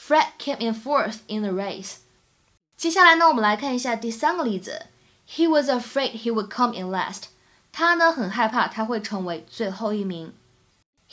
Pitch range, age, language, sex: 210-285 Hz, 10-29, Chinese, female